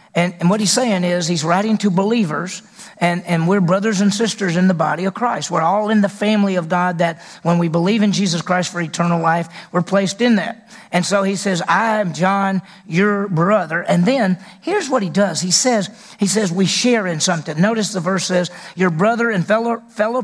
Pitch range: 175-210 Hz